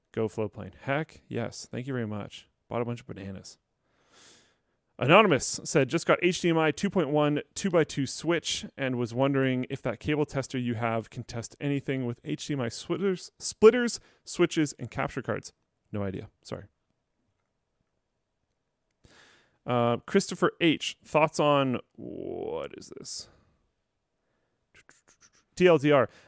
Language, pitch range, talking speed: English, 115-150 Hz, 120 wpm